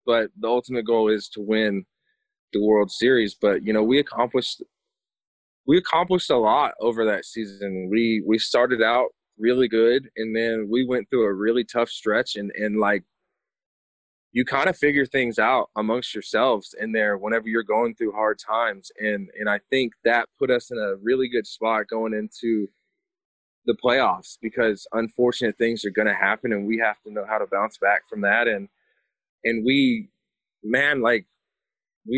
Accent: American